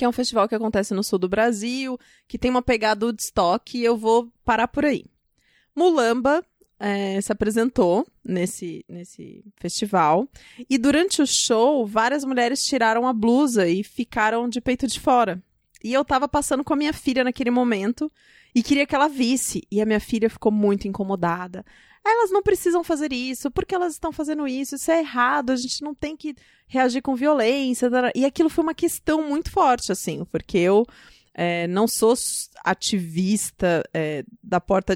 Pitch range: 195-265 Hz